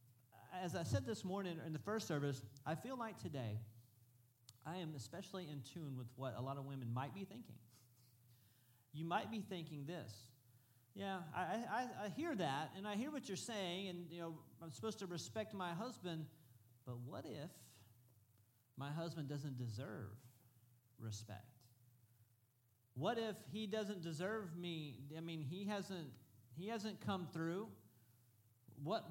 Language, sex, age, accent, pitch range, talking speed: English, male, 40-59, American, 120-190 Hz, 155 wpm